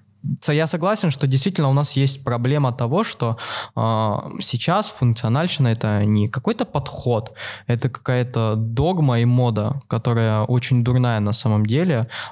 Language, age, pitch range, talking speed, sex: Russian, 20-39, 110-140 Hz, 135 wpm, male